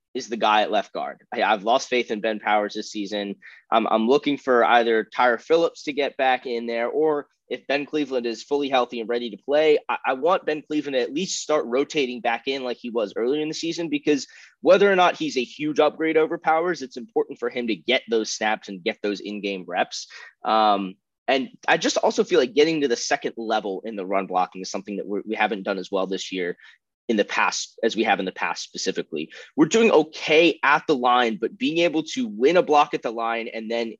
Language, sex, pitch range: English, male, 110-155 Hz